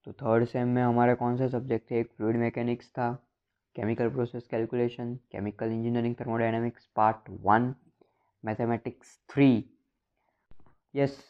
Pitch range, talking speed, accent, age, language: 110-125 Hz, 125 wpm, native, 20-39, Hindi